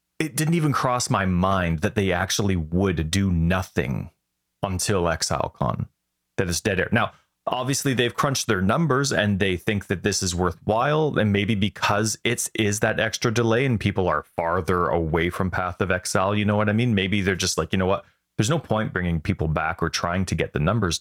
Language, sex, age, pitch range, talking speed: English, male, 30-49, 90-125 Hz, 210 wpm